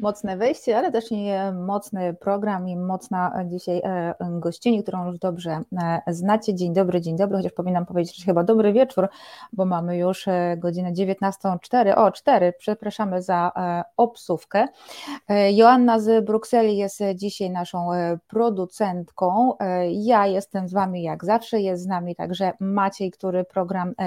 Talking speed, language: 140 wpm, Polish